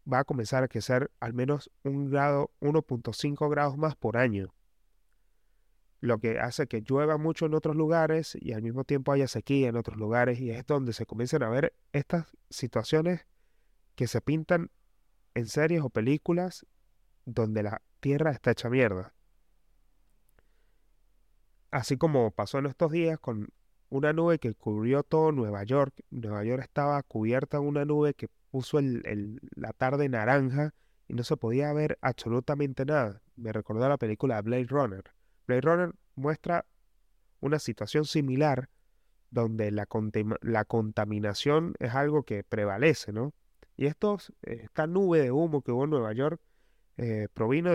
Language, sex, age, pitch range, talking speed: Spanish, male, 30-49, 115-150 Hz, 150 wpm